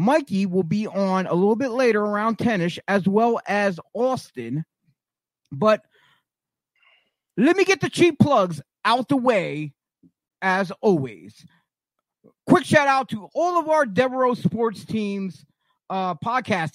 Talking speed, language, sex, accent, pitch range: 135 wpm, English, male, American, 170-255 Hz